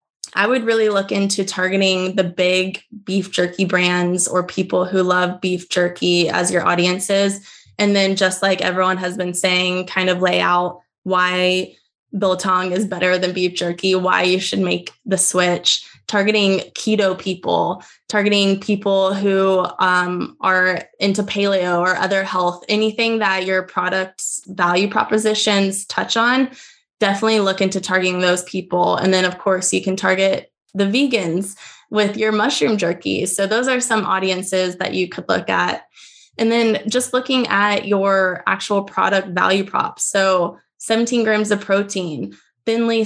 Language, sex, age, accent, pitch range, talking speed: English, female, 20-39, American, 185-210 Hz, 155 wpm